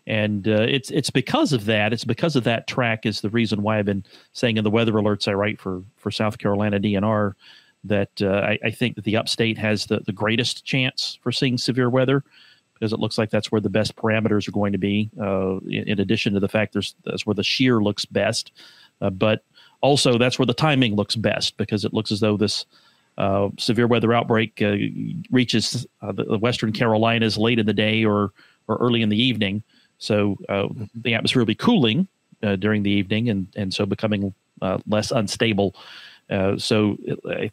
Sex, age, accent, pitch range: male, 40-59, American, 105-120 Hz